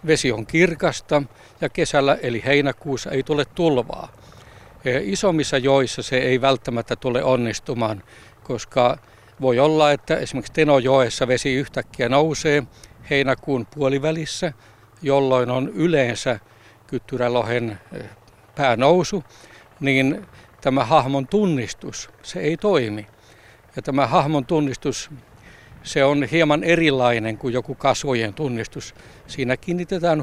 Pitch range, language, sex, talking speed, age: 120-150 Hz, Finnish, male, 105 wpm, 60-79